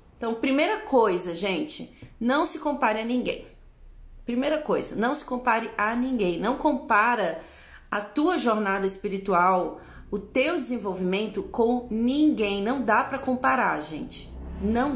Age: 30-49